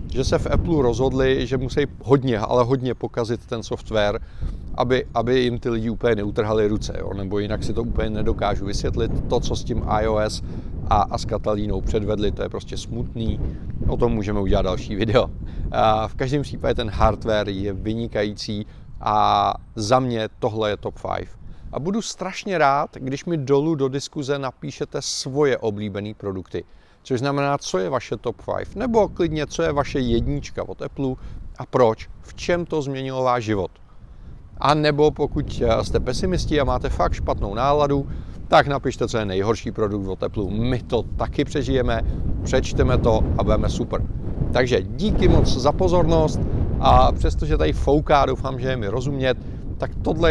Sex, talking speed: male, 170 wpm